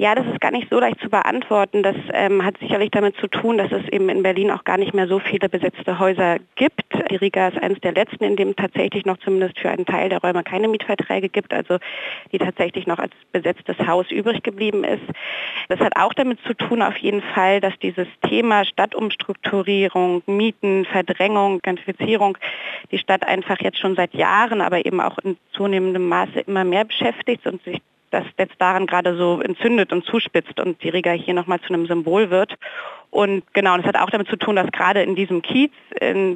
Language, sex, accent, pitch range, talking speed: German, female, German, 175-200 Hz, 205 wpm